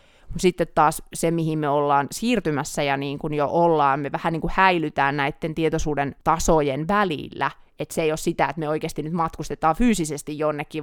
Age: 30-49